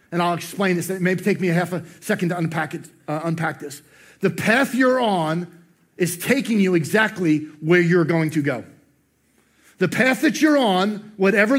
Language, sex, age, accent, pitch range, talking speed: English, male, 40-59, American, 190-245 Hz, 190 wpm